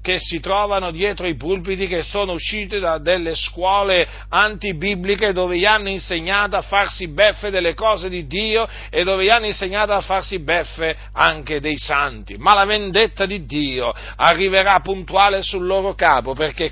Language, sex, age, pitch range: Italian, male, 50-69, 160-205 Hz